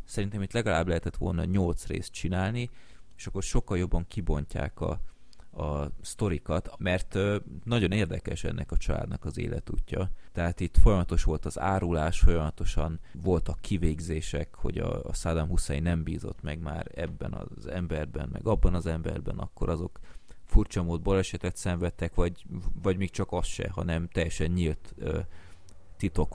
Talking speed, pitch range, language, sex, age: 150 wpm, 80-95 Hz, Hungarian, male, 30-49